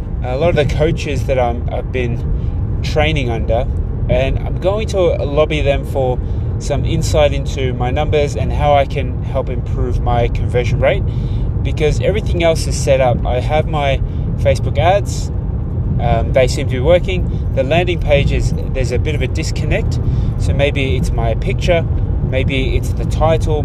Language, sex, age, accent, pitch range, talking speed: English, male, 20-39, Australian, 105-130 Hz, 165 wpm